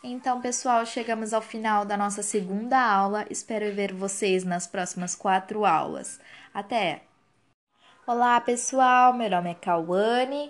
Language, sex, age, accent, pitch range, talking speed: Portuguese, female, 20-39, Brazilian, 190-230 Hz, 130 wpm